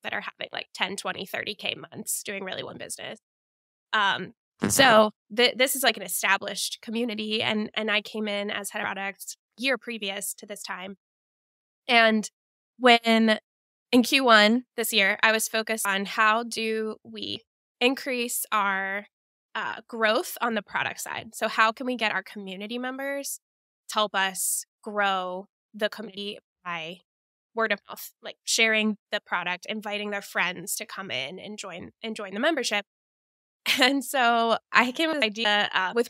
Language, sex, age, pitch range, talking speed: English, female, 10-29, 205-235 Hz, 165 wpm